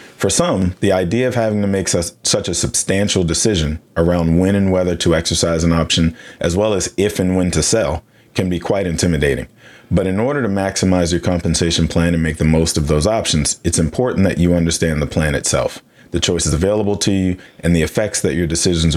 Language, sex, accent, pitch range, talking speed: English, male, American, 80-95 Hz, 210 wpm